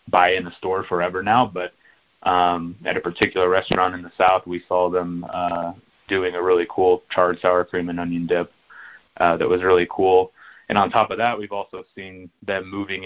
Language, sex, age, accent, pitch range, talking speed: English, male, 30-49, American, 90-100 Hz, 200 wpm